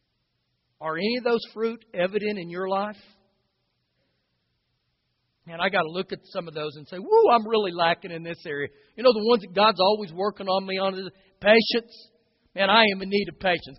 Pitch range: 205-290 Hz